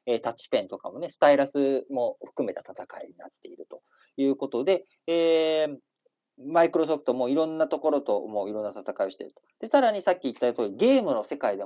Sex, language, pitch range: male, Japanese, 115-175 Hz